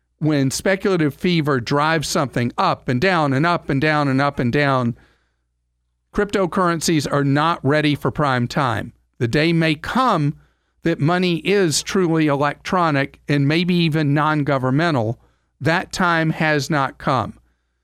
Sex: male